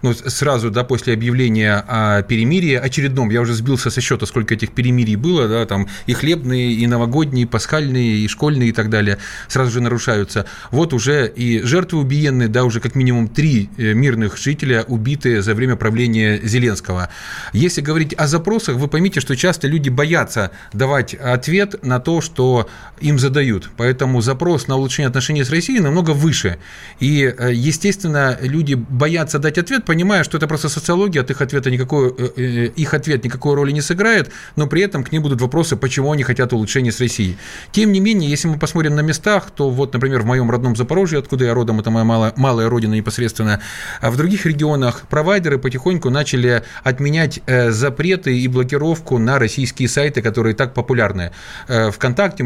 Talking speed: 175 wpm